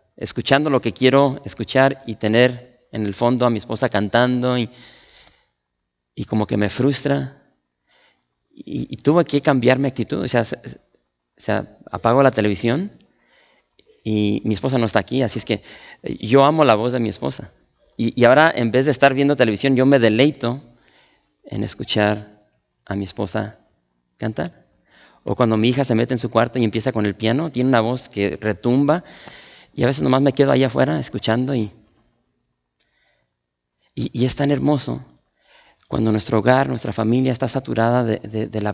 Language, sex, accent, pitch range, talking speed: English, male, Mexican, 105-135 Hz, 175 wpm